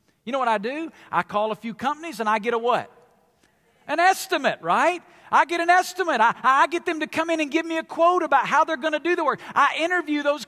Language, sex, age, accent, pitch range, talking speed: English, male, 50-69, American, 270-345 Hz, 260 wpm